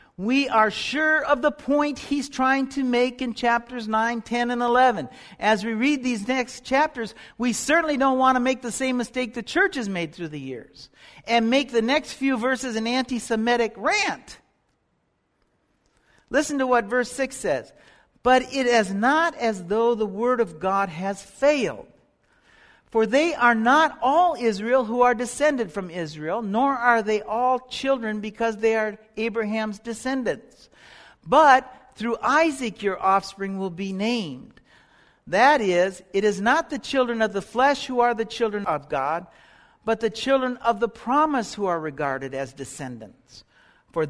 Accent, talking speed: American, 165 wpm